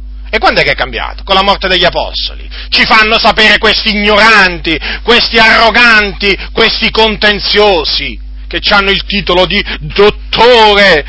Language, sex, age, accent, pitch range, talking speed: Italian, male, 40-59, native, 175-255 Hz, 140 wpm